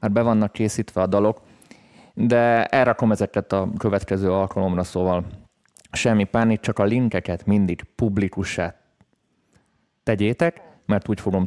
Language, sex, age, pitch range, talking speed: Hungarian, male, 30-49, 95-115 Hz, 125 wpm